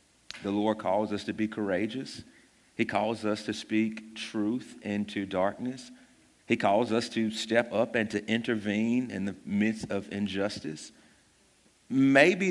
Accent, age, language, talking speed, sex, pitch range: American, 40-59, English, 145 wpm, male, 105-125 Hz